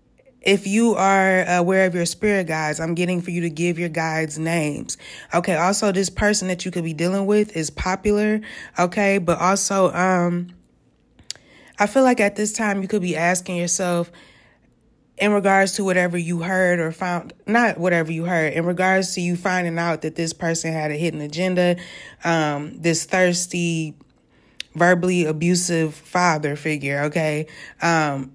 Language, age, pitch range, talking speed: English, 20-39, 165-190 Hz, 165 wpm